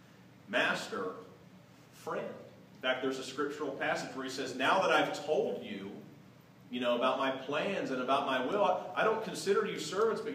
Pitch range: 135-205 Hz